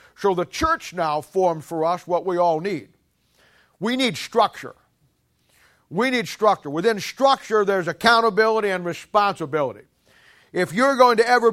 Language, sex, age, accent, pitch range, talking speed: English, male, 50-69, American, 175-230 Hz, 145 wpm